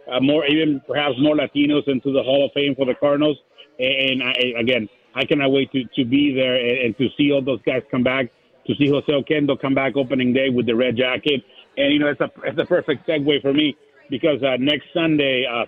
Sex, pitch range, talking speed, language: male, 130-150 Hz, 225 wpm, English